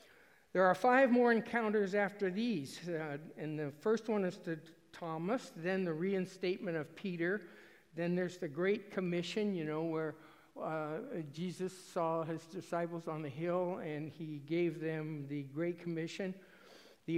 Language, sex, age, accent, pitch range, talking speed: English, male, 60-79, American, 160-195 Hz, 155 wpm